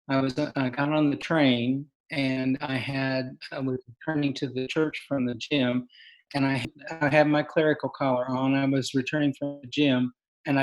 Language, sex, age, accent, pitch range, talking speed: English, male, 50-69, American, 125-145 Hz, 200 wpm